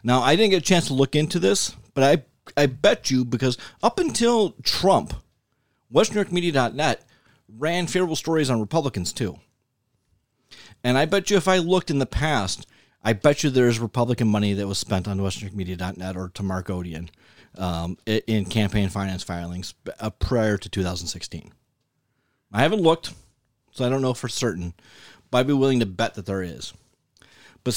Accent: American